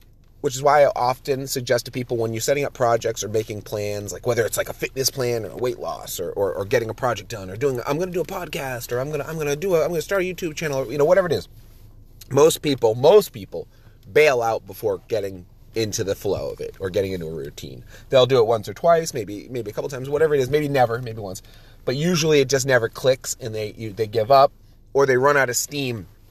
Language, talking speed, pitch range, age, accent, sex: English, 270 wpm, 110-150 Hz, 30-49, American, male